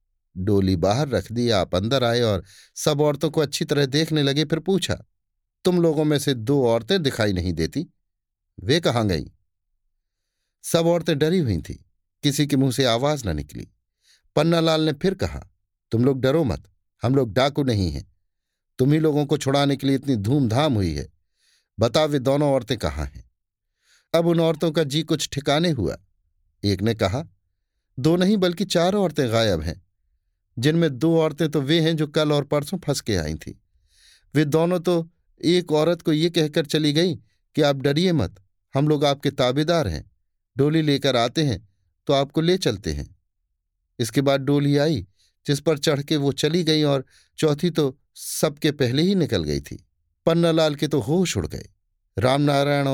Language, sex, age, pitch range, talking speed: Hindi, male, 50-69, 95-155 Hz, 180 wpm